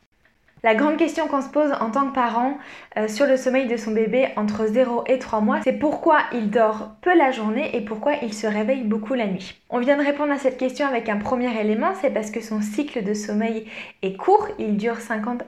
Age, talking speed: 20-39, 235 wpm